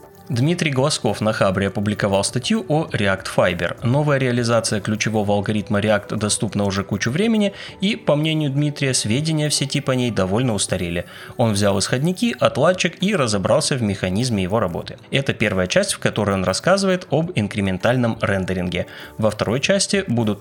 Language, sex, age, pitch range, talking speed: Russian, male, 20-39, 100-150 Hz, 155 wpm